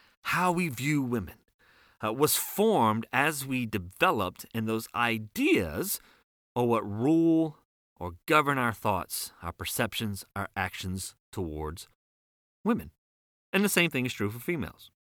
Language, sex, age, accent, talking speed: English, male, 40-59, American, 135 wpm